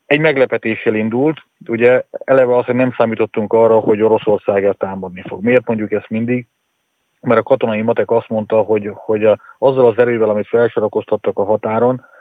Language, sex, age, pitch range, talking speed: Hungarian, male, 30-49, 105-125 Hz, 160 wpm